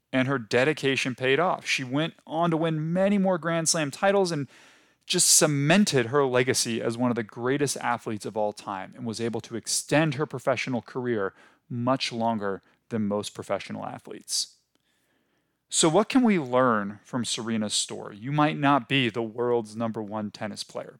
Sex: male